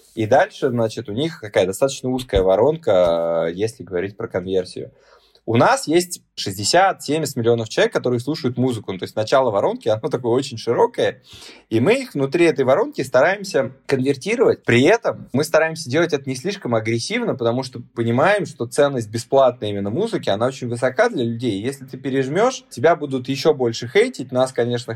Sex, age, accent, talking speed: male, 20-39, native, 170 wpm